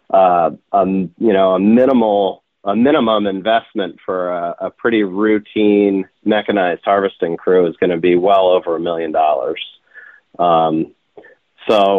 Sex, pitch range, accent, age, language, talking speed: male, 95-115 Hz, American, 40-59, English, 140 wpm